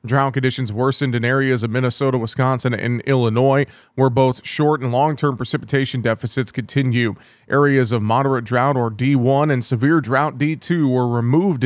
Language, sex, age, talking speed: English, male, 30-49, 160 wpm